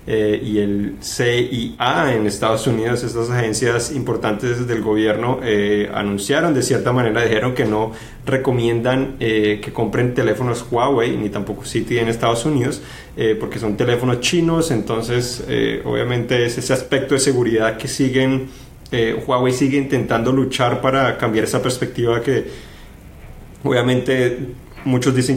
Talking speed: 140 wpm